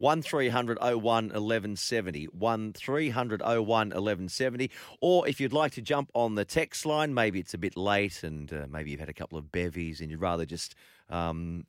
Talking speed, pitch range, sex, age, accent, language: 170 wpm, 105-140 Hz, male, 30-49, Australian, English